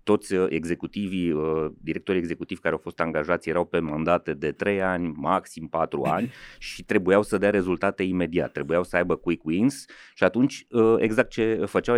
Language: Romanian